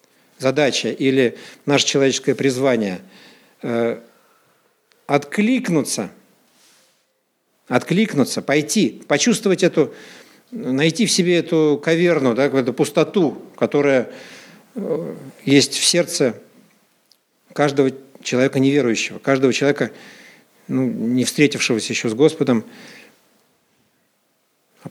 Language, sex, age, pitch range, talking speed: Russian, male, 50-69, 125-170 Hz, 80 wpm